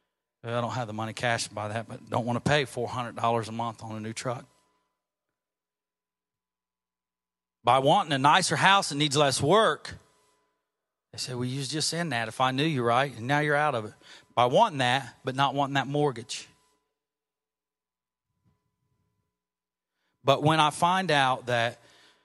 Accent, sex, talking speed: American, male, 165 wpm